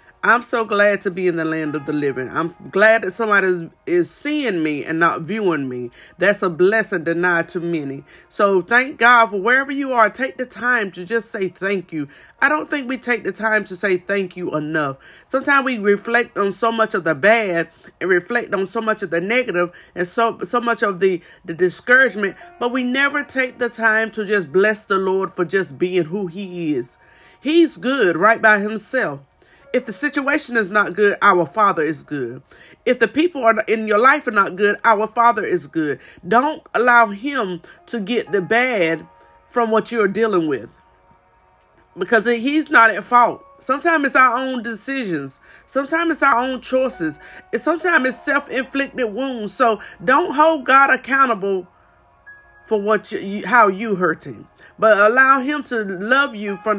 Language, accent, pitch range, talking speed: English, American, 185-255 Hz, 185 wpm